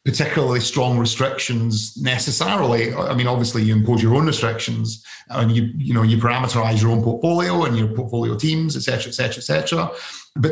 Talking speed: 190 wpm